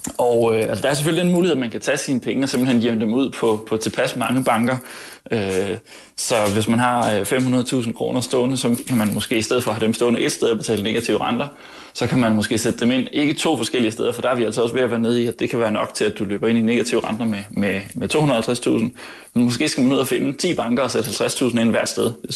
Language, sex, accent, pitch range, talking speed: Danish, male, native, 110-125 Hz, 280 wpm